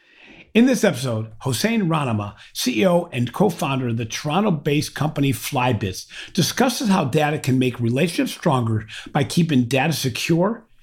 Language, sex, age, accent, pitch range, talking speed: English, male, 50-69, American, 125-175 Hz, 135 wpm